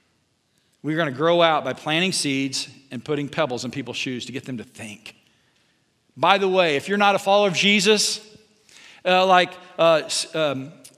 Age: 40-59